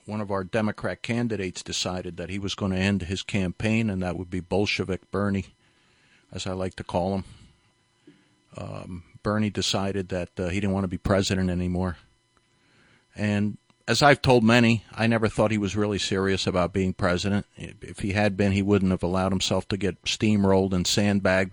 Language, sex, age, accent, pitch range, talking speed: English, male, 50-69, American, 95-110 Hz, 185 wpm